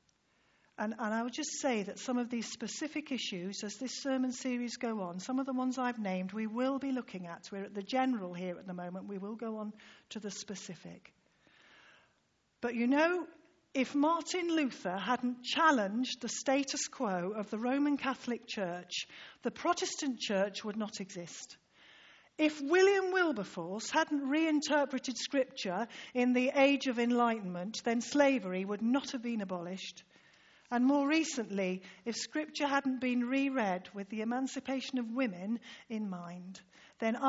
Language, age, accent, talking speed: English, 50-69, British, 160 wpm